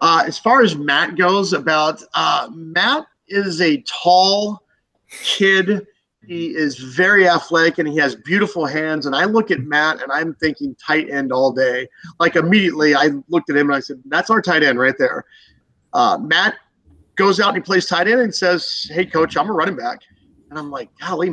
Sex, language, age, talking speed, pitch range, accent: male, English, 40-59, 195 wpm, 150-195 Hz, American